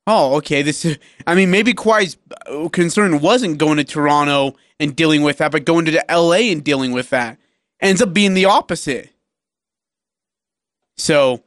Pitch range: 140-175 Hz